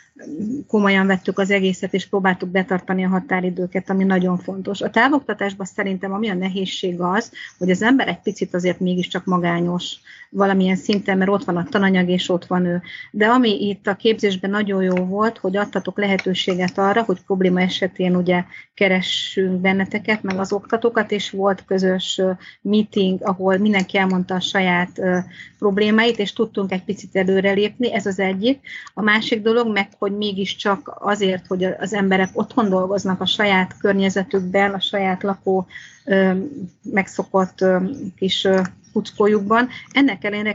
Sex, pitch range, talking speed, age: female, 185-210 Hz, 150 wpm, 30-49